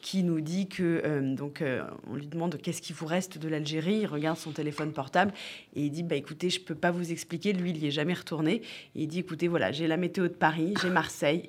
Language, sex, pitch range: French, female, 160-205 Hz